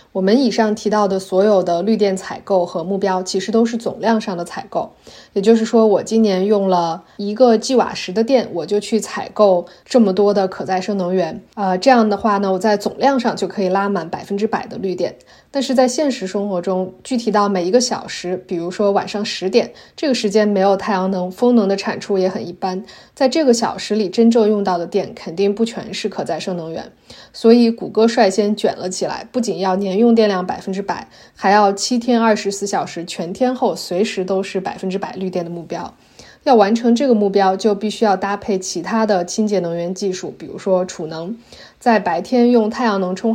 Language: Chinese